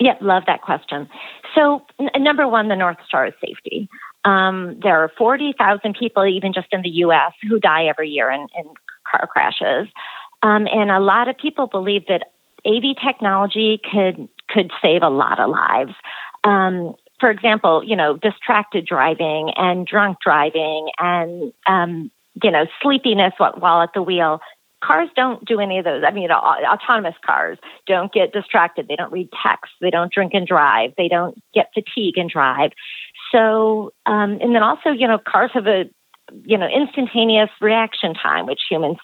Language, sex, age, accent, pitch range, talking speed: English, female, 40-59, American, 180-250 Hz, 175 wpm